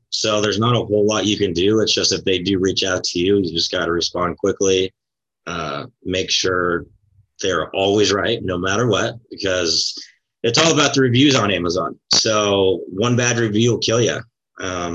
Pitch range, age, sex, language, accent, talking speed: 100-125 Hz, 30-49, male, English, American, 195 wpm